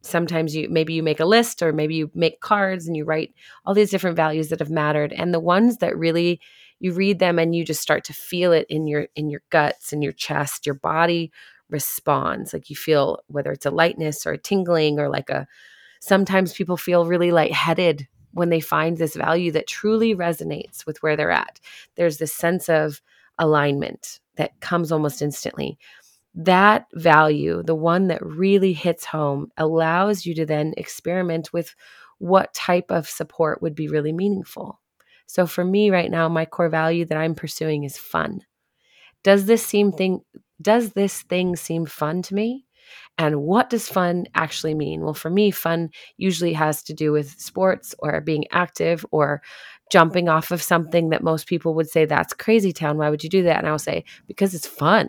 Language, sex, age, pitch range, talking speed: English, female, 30-49, 155-180 Hz, 190 wpm